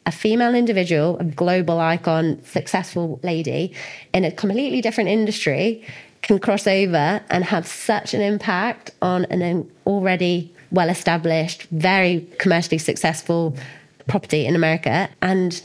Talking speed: 125 wpm